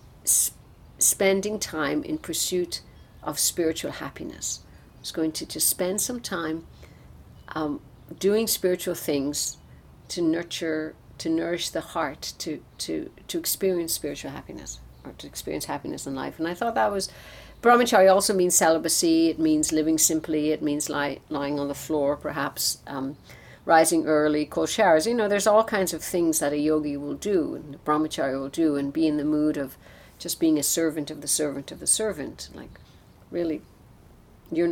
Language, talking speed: English, 170 wpm